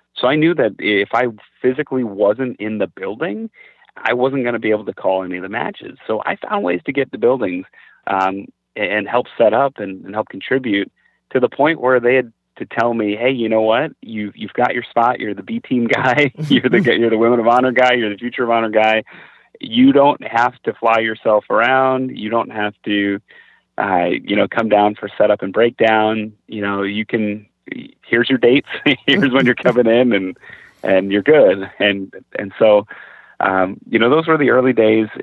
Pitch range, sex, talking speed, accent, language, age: 100-125 Hz, male, 210 wpm, American, English, 30-49